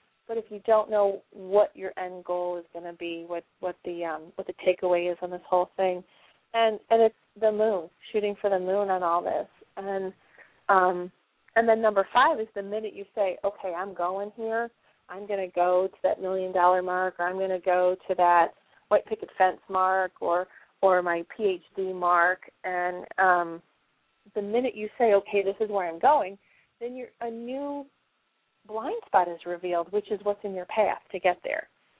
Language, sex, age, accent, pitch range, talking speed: English, female, 30-49, American, 180-205 Hz, 200 wpm